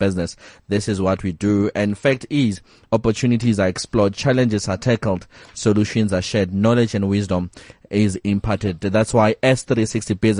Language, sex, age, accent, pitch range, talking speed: English, male, 30-49, South African, 95-110 Hz, 155 wpm